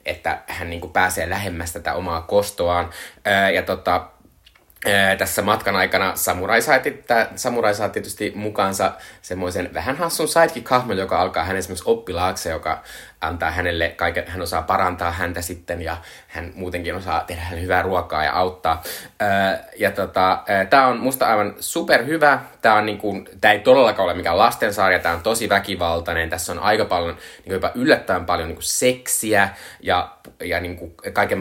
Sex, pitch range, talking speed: male, 85-100 Hz, 155 wpm